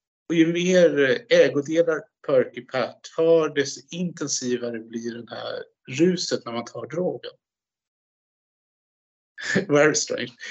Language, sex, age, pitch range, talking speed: Swedish, male, 50-69, 125-170 Hz, 110 wpm